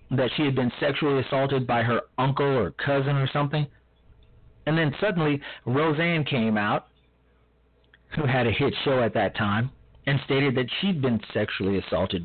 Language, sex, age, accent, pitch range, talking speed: English, male, 40-59, American, 105-140 Hz, 165 wpm